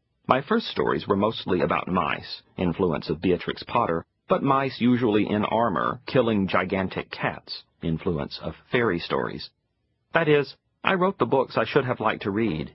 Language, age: English, 40-59